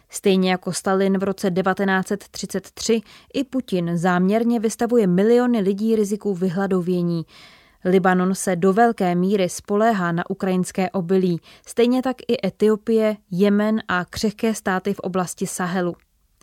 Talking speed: 125 wpm